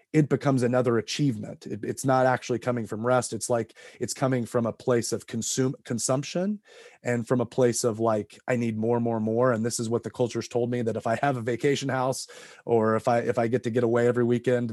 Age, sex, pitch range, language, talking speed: 30-49, male, 115-130 Hz, English, 235 wpm